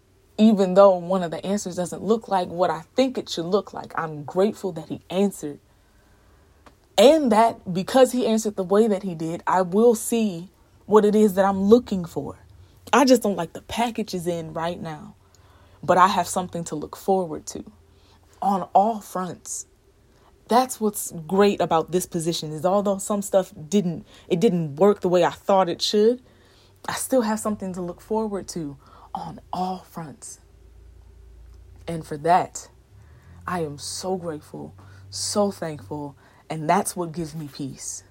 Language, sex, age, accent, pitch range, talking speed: English, female, 20-39, American, 135-190 Hz, 170 wpm